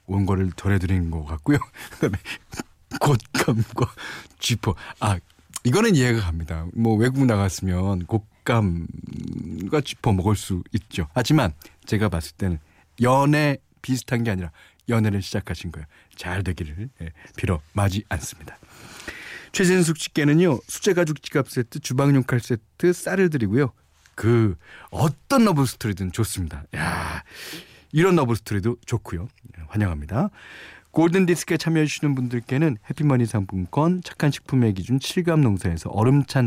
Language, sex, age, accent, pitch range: Korean, male, 40-59, native, 95-140 Hz